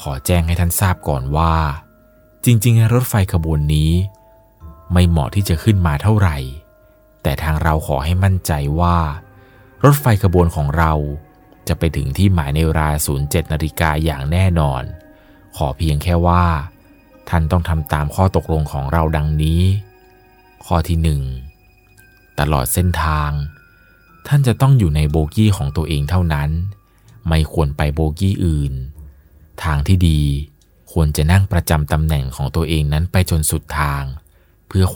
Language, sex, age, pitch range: Thai, male, 30-49, 75-95 Hz